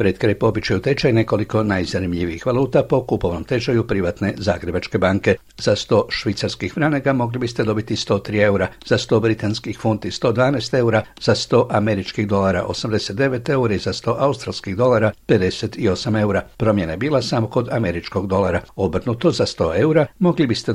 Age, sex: 60-79, male